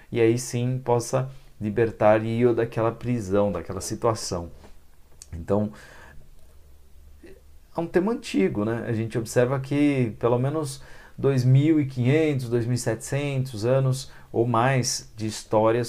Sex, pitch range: male, 100-125 Hz